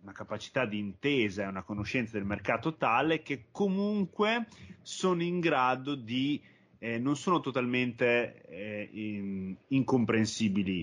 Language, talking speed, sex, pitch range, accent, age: Italian, 125 wpm, male, 105-145 Hz, native, 30-49